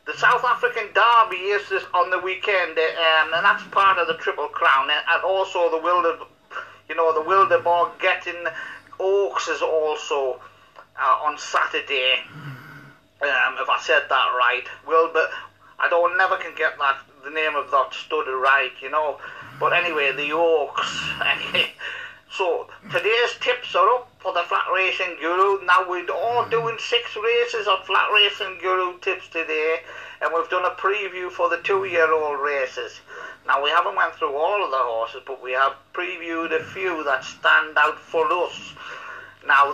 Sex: male